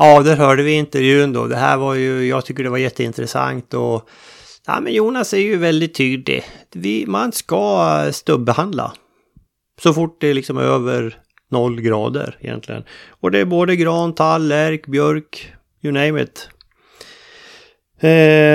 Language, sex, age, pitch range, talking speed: Swedish, male, 30-49, 120-155 Hz, 155 wpm